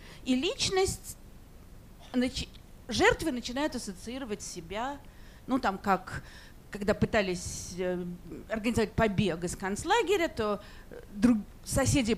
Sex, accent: female, native